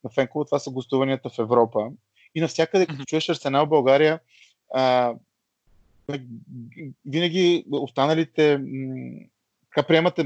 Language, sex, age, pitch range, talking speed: Bulgarian, male, 20-39, 120-140 Hz, 110 wpm